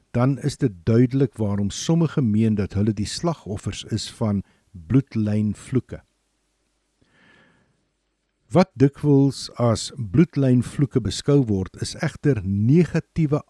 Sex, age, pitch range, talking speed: male, 60-79, 105-145 Hz, 100 wpm